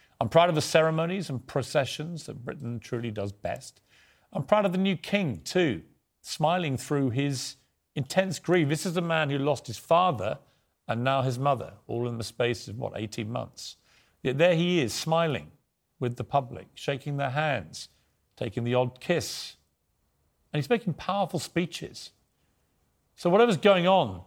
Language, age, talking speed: English, 40-59, 170 wpm